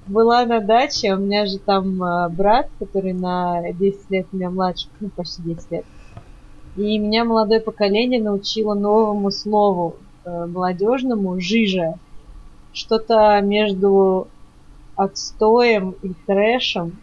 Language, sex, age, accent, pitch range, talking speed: Russian, female, 20-39, native, 185-225 Hz, 125 wpm